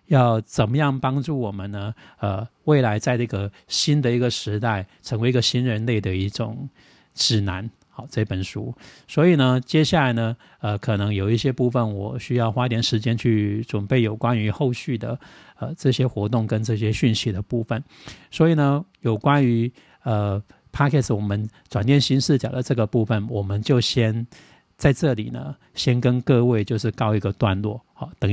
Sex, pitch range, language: male, 105-130 Hz, Chinese